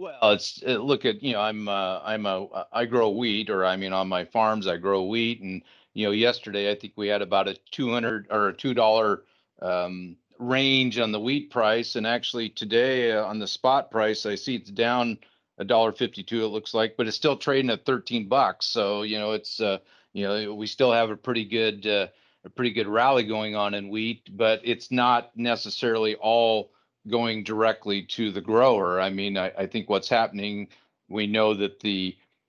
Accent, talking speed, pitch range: American, 215 wpm, 105-120 Hz